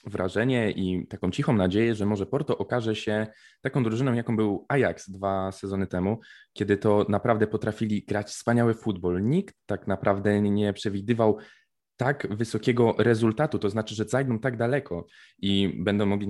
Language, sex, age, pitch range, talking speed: Polish, male, 20-39, 100-125 Hz, 155 wpm